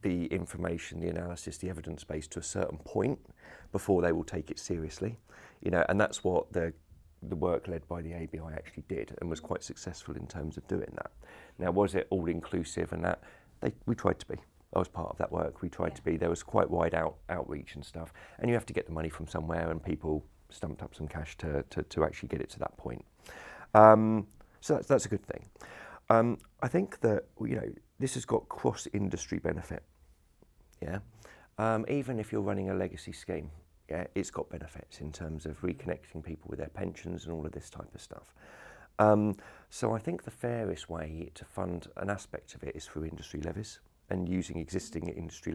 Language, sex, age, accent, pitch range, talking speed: English, male, 40-59, British, 80-95 Hz, 210 wpm